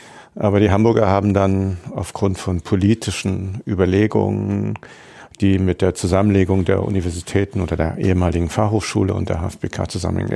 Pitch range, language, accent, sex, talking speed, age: 95-110 Hz, English, German, male, 135 wpm, 50-69